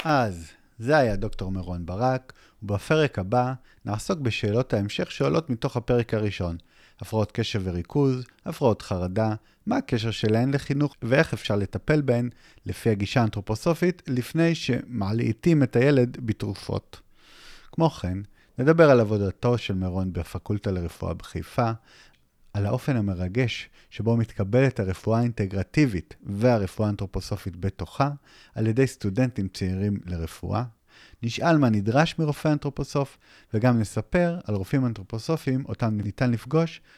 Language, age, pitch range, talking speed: Hebrew, 30-49, 95-130 Hz, 120 wpm